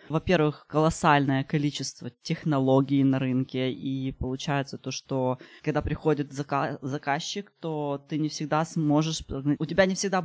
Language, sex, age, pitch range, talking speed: Ukrainian, female, 20-39, 140-170 Hz, 130 wpm